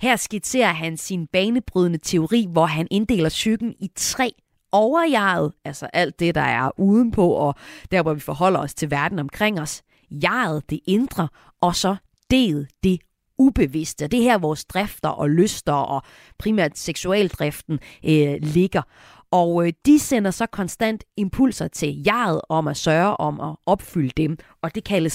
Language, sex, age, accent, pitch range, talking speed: Danish, female, 30-49, native, 155-220 Hz, 160 wpm